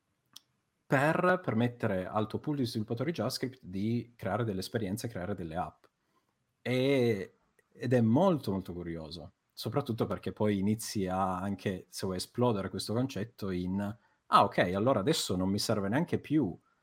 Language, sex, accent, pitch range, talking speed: Italian, male, native, 95-115 Hz, 150 wpm